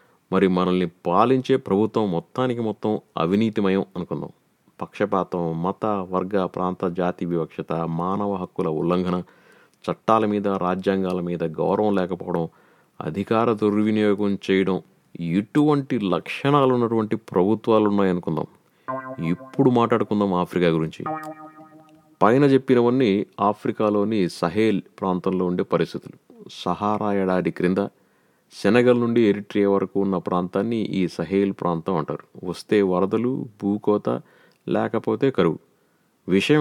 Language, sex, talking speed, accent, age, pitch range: Telugu, male, 100 wpm, native, 30-49, 95-120 Hz